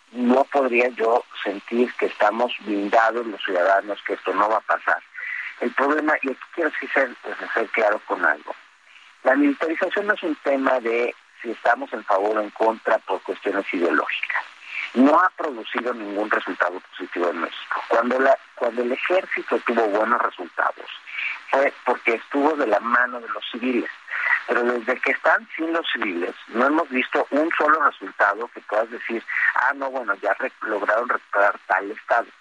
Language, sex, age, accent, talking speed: Spanish, male, 50-69, Mexican, 170 wpm